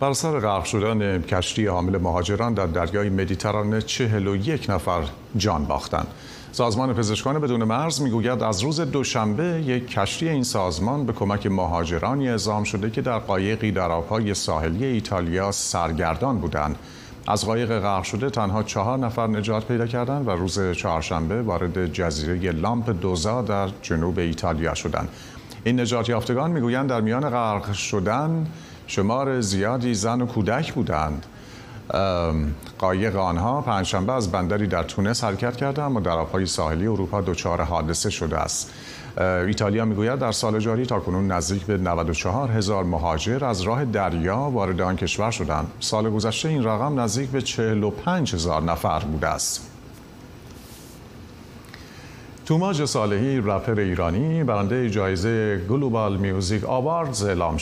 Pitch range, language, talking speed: 95-120 Hz, Persian, 145 wpm